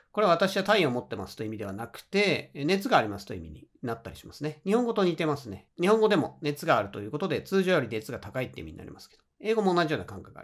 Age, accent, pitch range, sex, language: 40-59, native, 105-170 Hz, male, Japanese